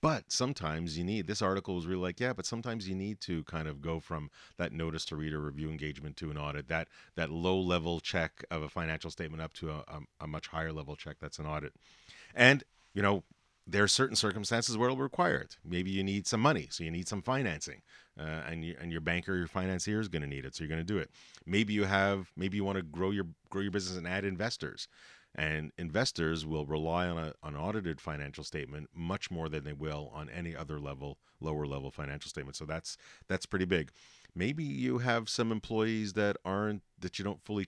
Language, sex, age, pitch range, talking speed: English, male, 40-59, 80-100 Hz, 225 wpm